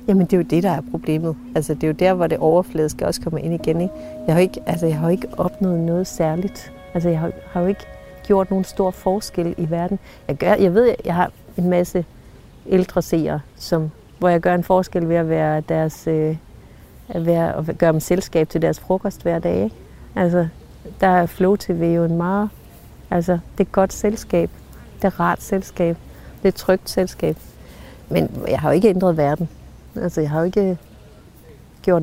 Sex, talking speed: female, 205 wpm